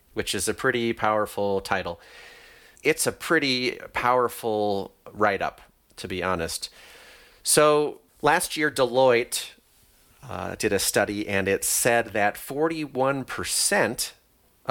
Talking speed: 110 wpm